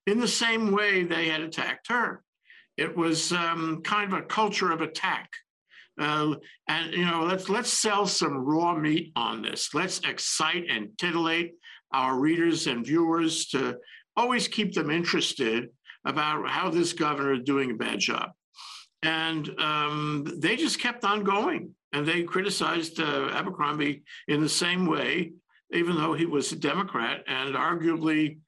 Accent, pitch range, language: American, 150-190 Hz, English